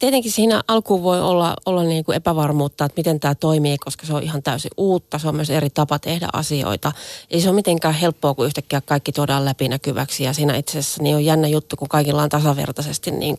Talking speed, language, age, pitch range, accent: 220 wpm, Finnish, 30-49, 150-195 Hz, native